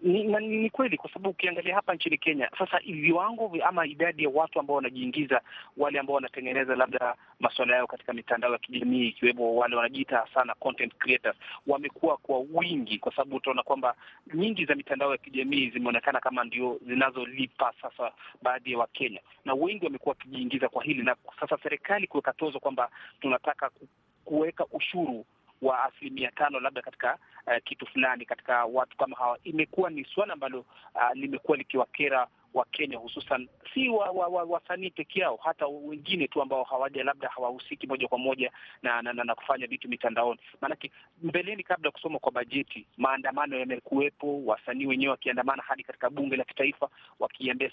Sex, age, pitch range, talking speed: male, 40-59, 125-165 Hz, 165 wpm